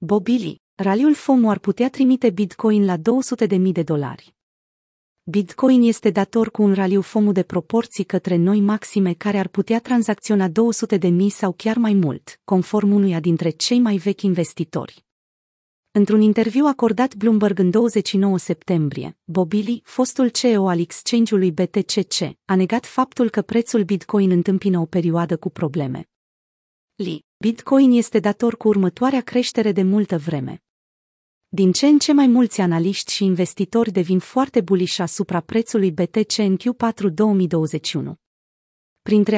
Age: 30-49